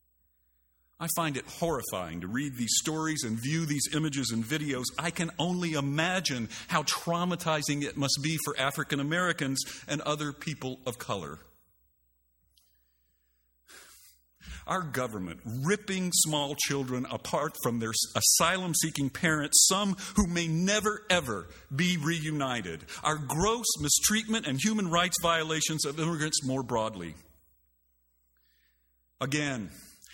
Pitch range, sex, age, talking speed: 110-170 Hz, male, 50-69, 120 wpm